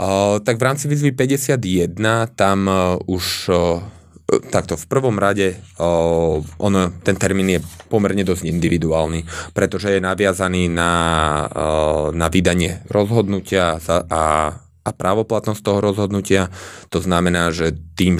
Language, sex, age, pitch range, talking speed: Slovak, male, 30-49, 80-95 Hz, 130 wpm